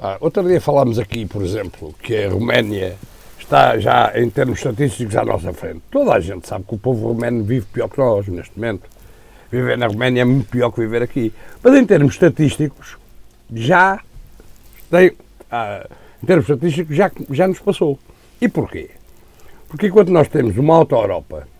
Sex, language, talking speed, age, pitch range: male, Portuguese, 175 wpm, 60-79, 120-165 Hz